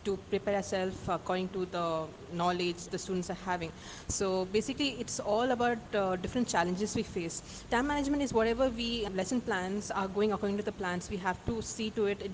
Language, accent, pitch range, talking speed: English, Indian, 190-230 Hz, 200 wpm